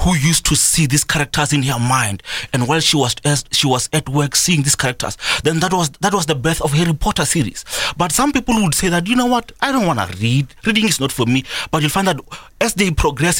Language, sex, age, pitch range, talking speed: English, male, 30-49, 140-185 Hz, 260 wpm